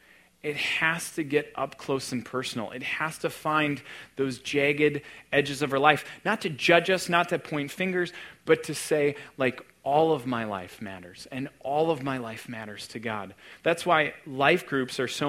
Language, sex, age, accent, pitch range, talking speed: English, male, 30-49, American, 120-155 Hz, 190 wpm